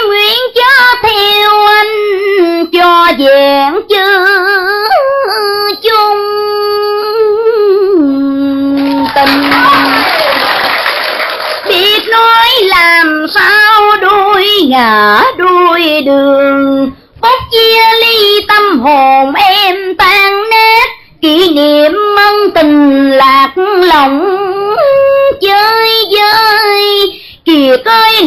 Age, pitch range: 30-49, 300-420 Hz